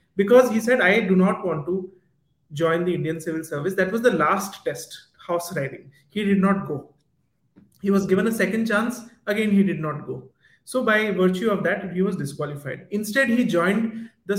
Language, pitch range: English, 165-220 Hz